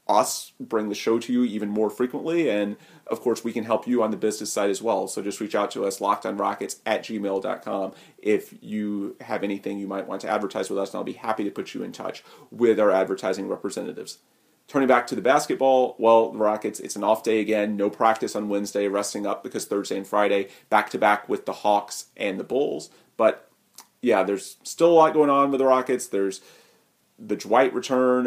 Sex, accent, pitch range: male, American, 105-125 Hz